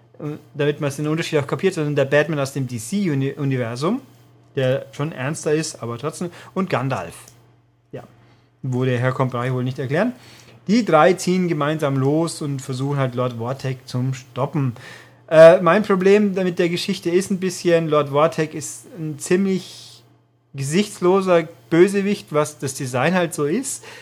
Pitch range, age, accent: 130-170 Hz, 30-49, German